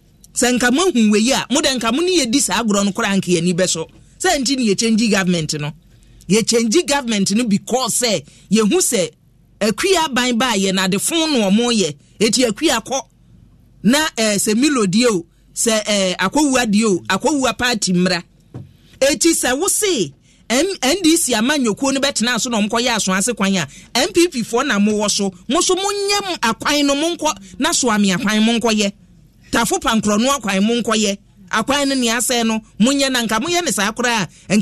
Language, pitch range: English, 185-245 Hz